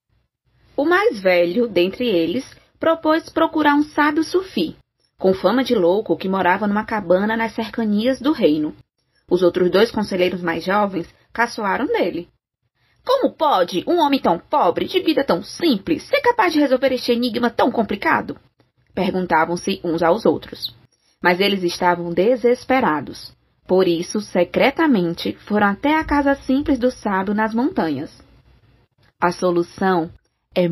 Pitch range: 180-280 Hz